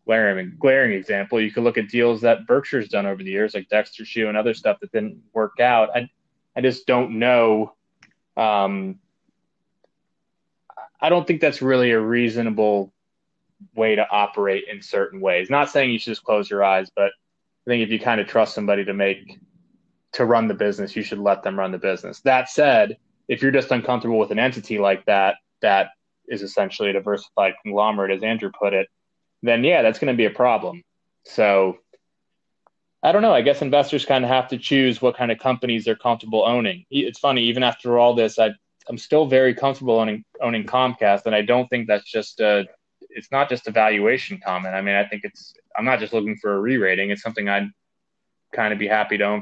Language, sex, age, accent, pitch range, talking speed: English, male, 20-39, American, 100-125 Hz, 200 wpm